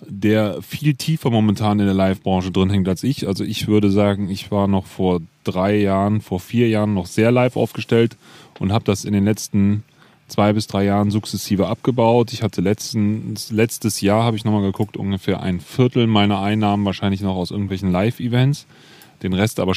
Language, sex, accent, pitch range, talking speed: German, male, German, 100-125 Hz, 185 wpm